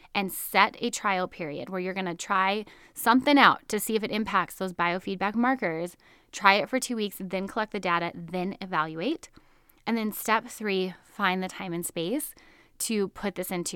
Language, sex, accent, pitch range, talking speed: English, female, American, 180-230 Hz, 190 wpm